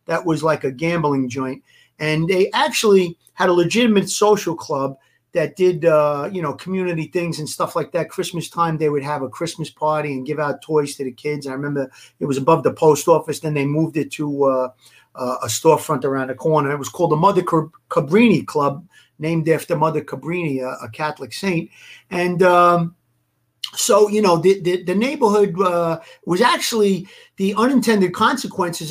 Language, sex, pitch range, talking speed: English, male, 150-180 Hz, 185 wpm